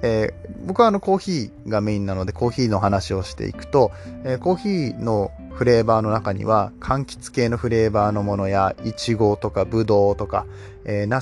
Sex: male